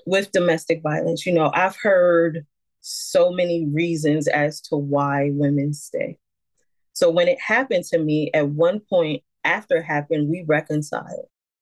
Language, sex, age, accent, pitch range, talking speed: English, female, 20-39, American, 165-250 Hz, 150 wpm